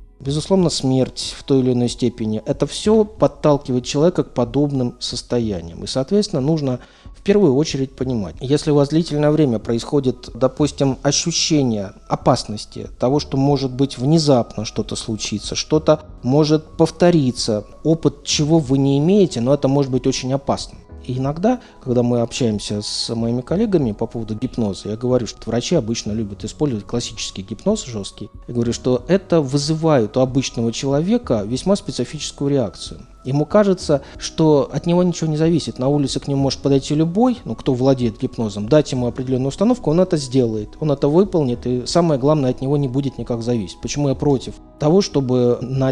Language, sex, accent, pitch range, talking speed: Russian, male, native, 115-150 Hz, 165 wpm